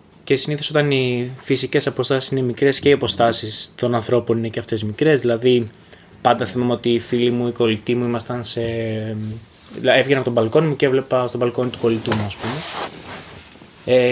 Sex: male